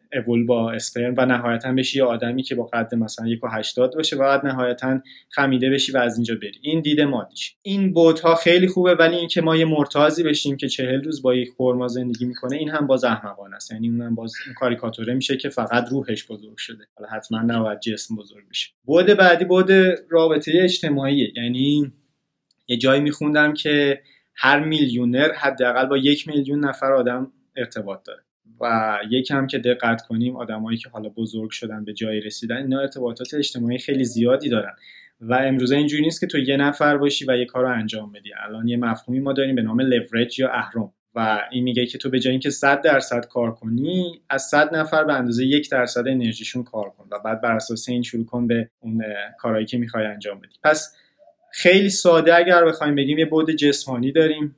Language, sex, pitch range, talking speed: Persian, male, 115-145 Hz, 195 wpm